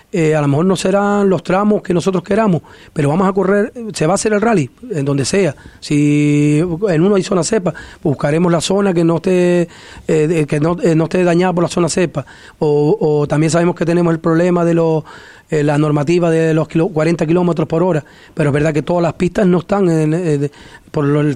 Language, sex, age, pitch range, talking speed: Spanish, male, 30-49, 150-175 Hz, 215 wpm